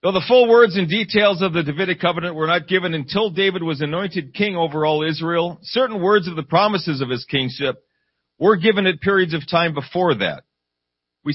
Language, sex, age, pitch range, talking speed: English, male, 40-59, 125-185 Hz, 200 wpm